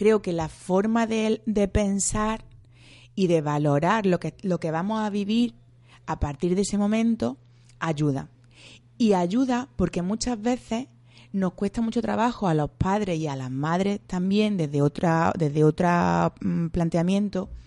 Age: 30-49